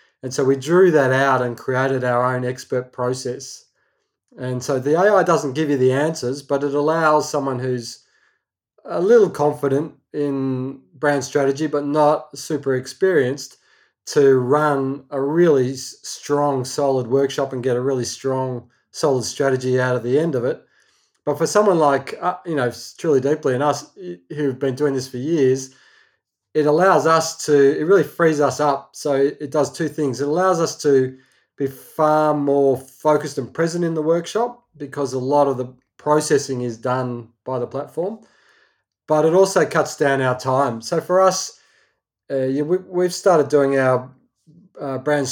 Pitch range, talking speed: 130-155 Hz, 170 wpm